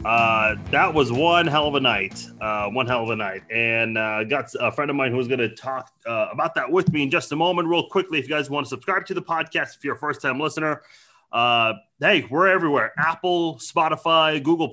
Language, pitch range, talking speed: English, 115-160 Hz, 235 wpm